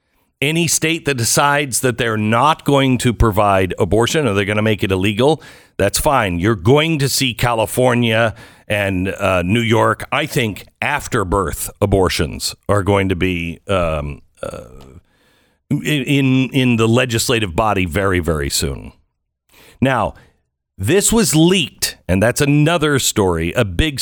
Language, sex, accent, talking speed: English, male, American, 140 wpm